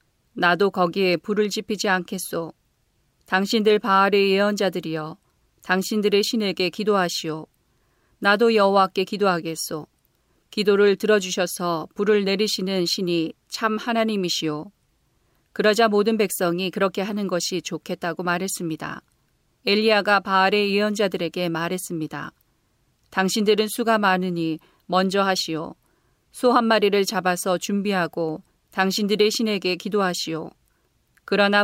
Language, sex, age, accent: Korean, female, 40-59, native